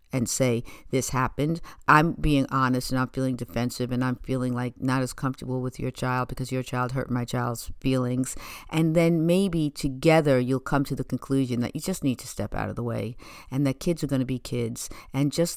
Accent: American